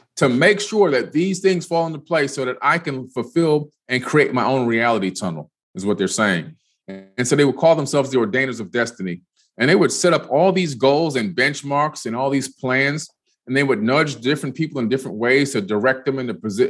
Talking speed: 225 wpm